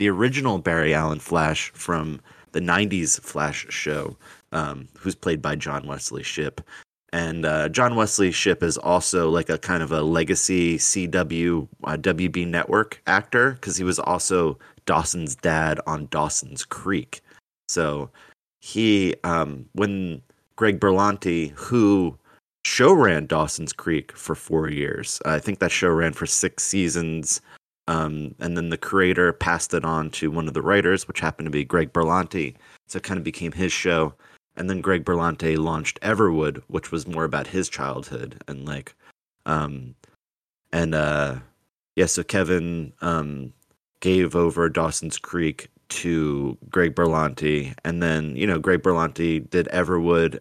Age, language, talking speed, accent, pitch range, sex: 30-49, English, 150 wpm, American, 80-90 Hz, male